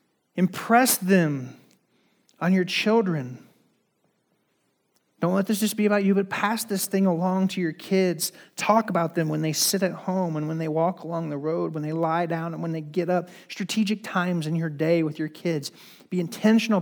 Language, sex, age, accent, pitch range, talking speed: English, male, 30-49, American, 150-185 Hz, 195 wpm